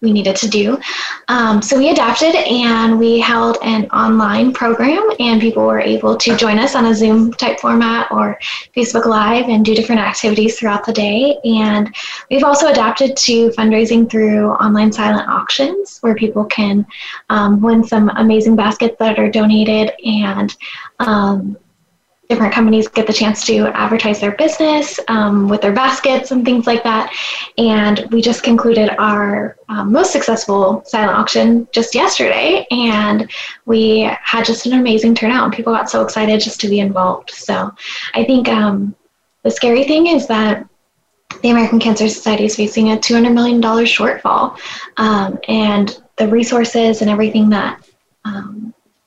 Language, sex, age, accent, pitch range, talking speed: English, female, 10-29, American, 215-235 Hz, 160 wpm